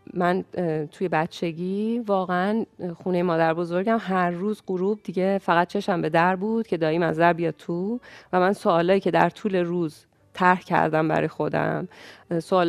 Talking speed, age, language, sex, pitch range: 160 wpm, 30-49, Persian, female, 165-210 Hz